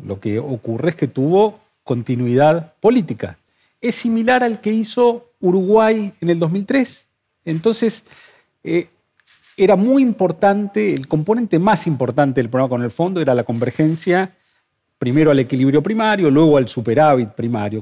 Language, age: Spanish, 40-59